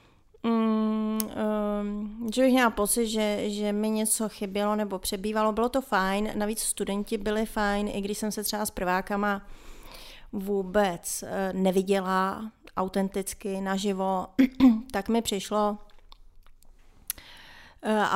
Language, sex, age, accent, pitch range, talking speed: Czech, female, 30-49, native, 190-215 Hz, 120 wpm